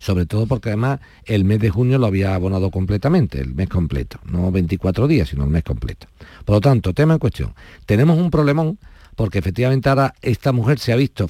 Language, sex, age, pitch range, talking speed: Spanish, male, 50-69, 105-150 Hz, 205 wpm